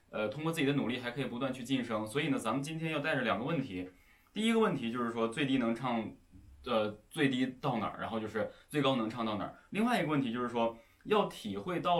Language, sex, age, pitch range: Chinese, male, 20-39, 110-140 Hz